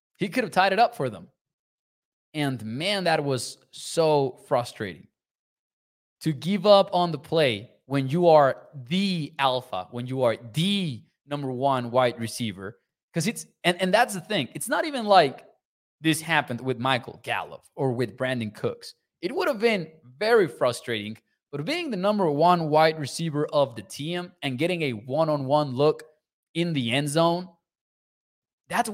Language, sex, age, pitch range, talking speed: English, male, 20-39, 130-185 Hz, 160 wpm